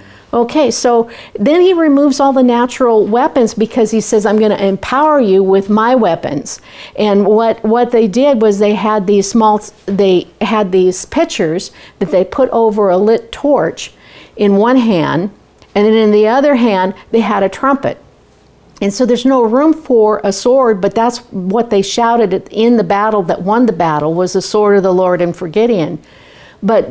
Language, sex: English, female